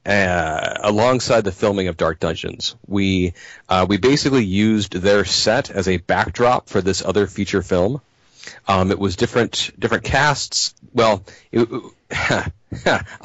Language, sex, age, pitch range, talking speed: English, male, 40-59, 95-110 Hz, 140 wpm